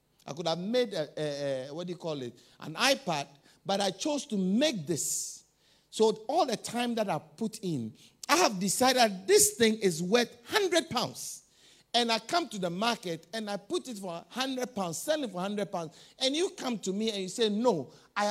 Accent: Nigerian